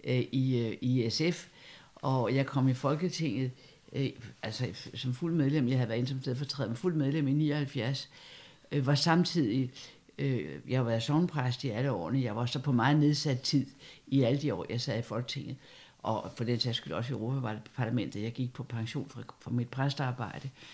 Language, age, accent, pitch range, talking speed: Danish, 60-79, native, 130-155 Hz, 180 wpm